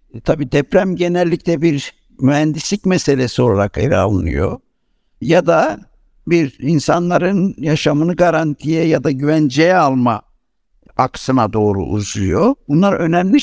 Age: 60-79